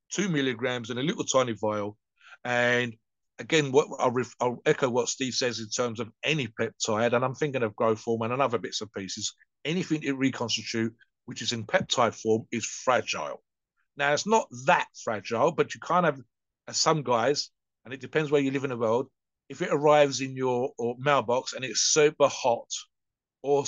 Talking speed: 195 wpm